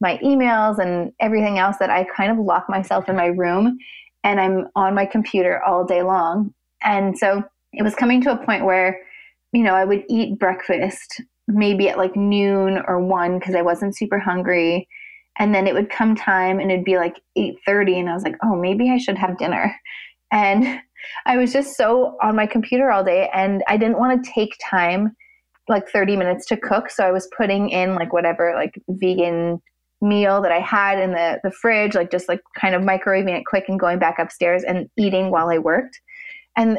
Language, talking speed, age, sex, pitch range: English, 205 wpm, 20-39, female, 185-225 Hz